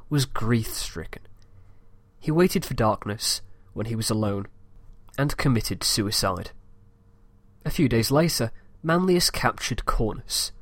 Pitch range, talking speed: 100-130 Hz, 115 wpm